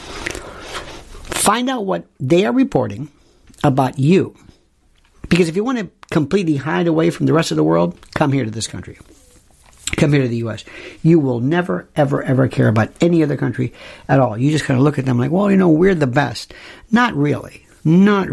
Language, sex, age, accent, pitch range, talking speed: English, male, 60-79, American, 120-180 Hz, 200 wpm